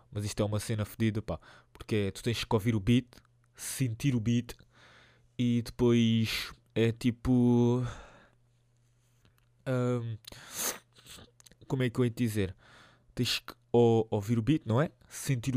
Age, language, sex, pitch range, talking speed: 20-39, Portuguese, male, 100-120 Hz, 145 wpm